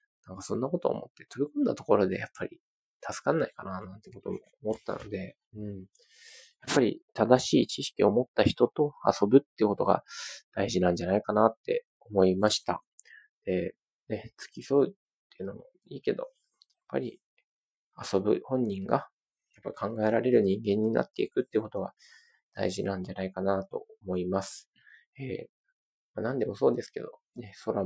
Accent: native